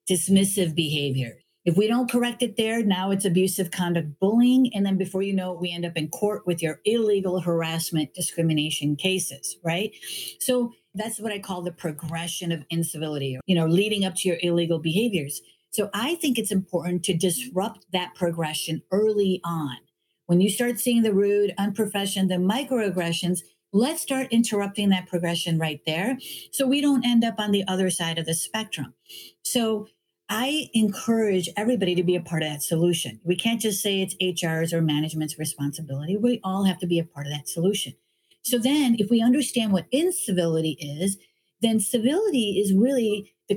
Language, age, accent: English, 50-69, American